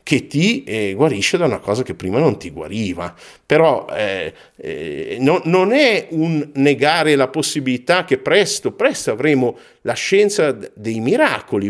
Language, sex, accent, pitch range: Italian, male, native, 125-195 Hz